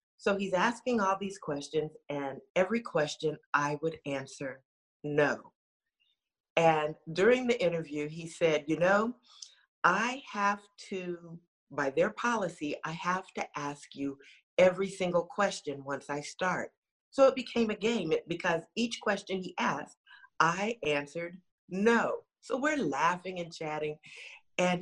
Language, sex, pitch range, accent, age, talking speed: English, female, 155-215 Hz, American, 50-69, 140 wpm